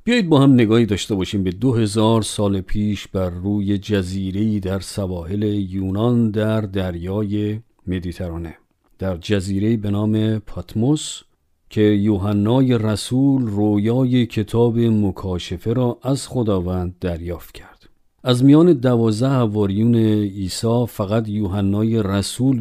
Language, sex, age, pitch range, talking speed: Persian, male, 50-69, 100-120 Hz, 115 wpm